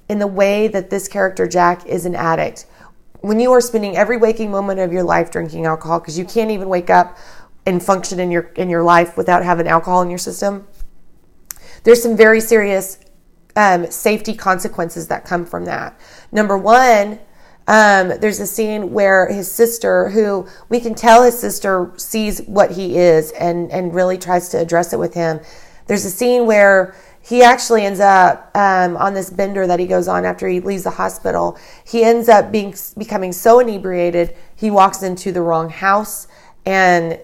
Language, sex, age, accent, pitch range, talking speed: English, female, 30-49, American, 175-215 Hz, 185 wpm